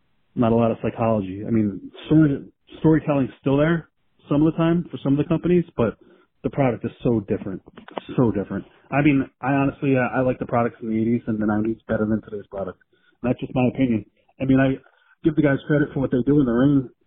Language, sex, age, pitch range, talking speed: English, male, 30-49, 125-145 Hz, 230 wpm